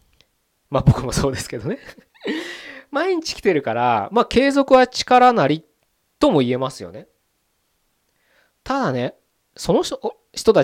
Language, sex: Japanese, male